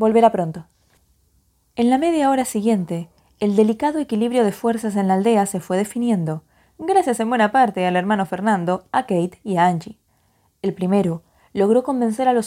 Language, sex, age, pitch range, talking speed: Spanish, female, 20-39, 180-230 Hz, 175 wpm